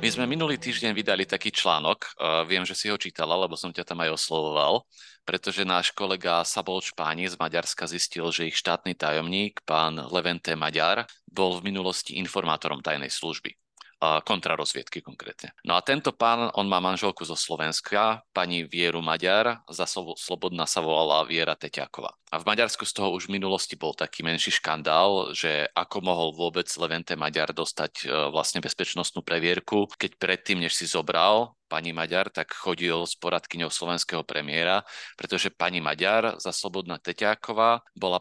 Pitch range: 85-95 Hz